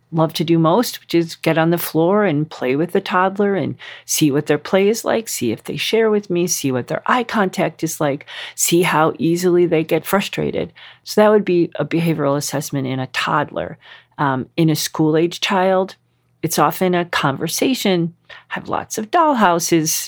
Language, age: English, 50-69